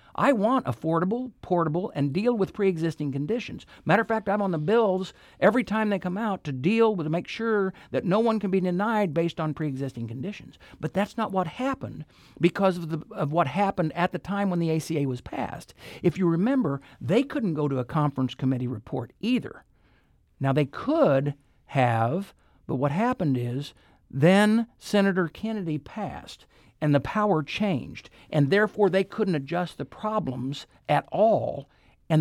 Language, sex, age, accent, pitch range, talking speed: English, male, 60-79, American, 145-210 Hz, 175 wpm